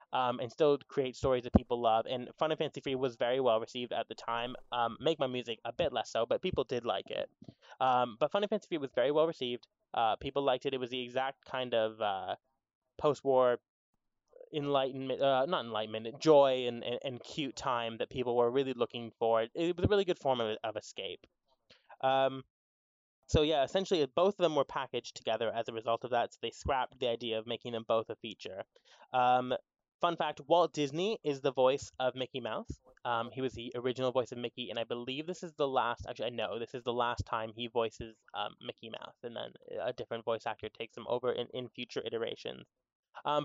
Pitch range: 120-150 Hz